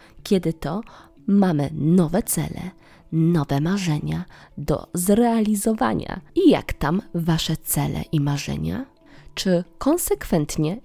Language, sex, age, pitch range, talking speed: Polish, female, 20-39, 155-205 Hz, 100 wpm